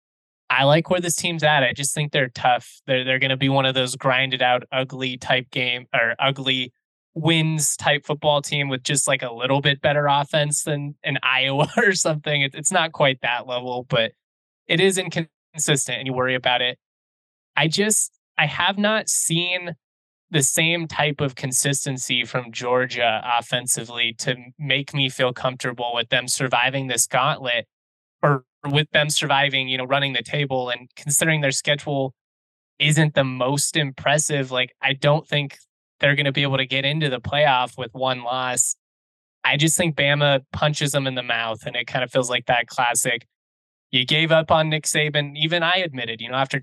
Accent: American